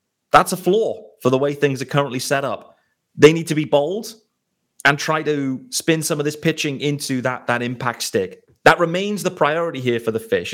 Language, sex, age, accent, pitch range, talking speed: English, male, 30-49, British, 125-165 Hz, 210 wpm